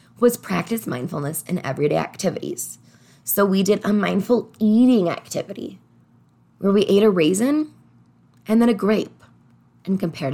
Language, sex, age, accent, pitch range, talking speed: English, female, 20-39, American, 170-240 Hz, 140 wpm